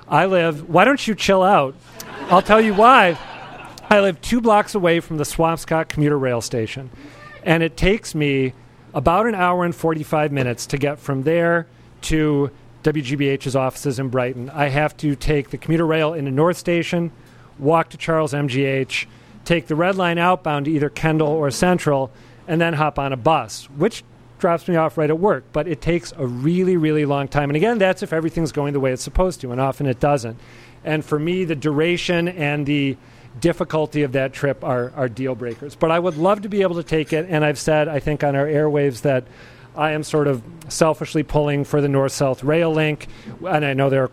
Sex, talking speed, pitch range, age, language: male, 205 wpm, 135-165 Hz, 40-59, English